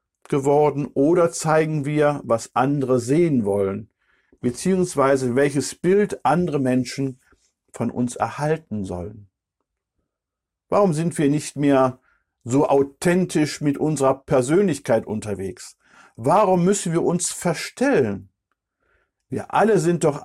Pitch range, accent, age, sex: 125-160 Hz, German, 50-69, male